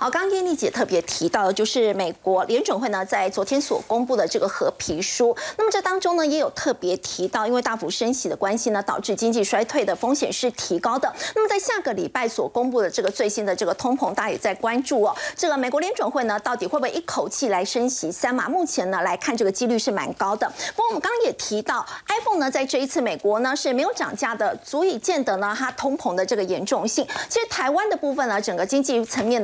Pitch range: 225-320 Hz